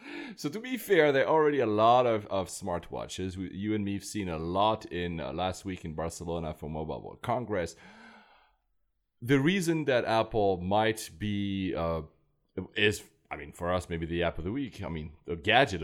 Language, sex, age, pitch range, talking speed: English, male, 30-49, 80-100 Hz, 195 wpm